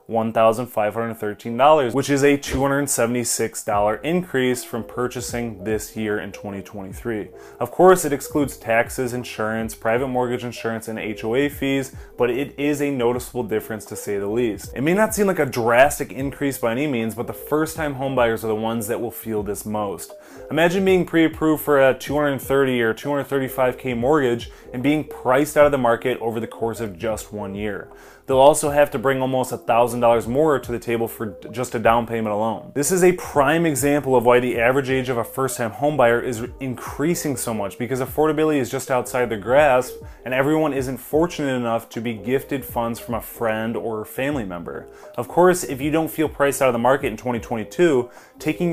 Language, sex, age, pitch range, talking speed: English, male, 20-39, 115-140 Hz, 185 wpm